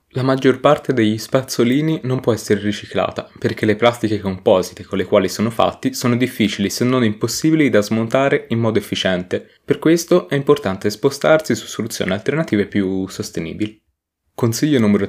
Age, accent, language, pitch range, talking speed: 20-39, native, Italian, 105-130 Hz, 160 wpm